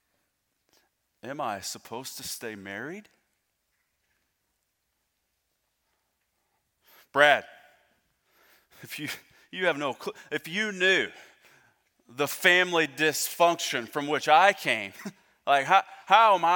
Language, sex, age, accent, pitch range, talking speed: English, male, 30-49, American, 125-165 Hz, 100 wpm